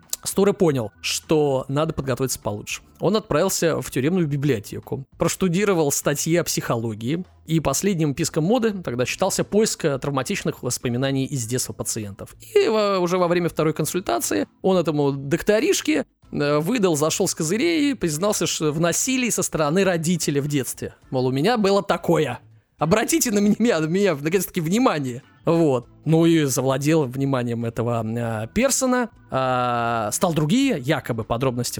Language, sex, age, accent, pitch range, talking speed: Russian, male, 20-39, native, 120-180 Hz, 140 wpm